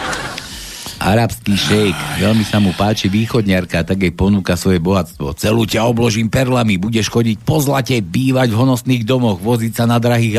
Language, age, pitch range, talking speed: Slovak, 60-79, 100-125 Hz, 160 wpm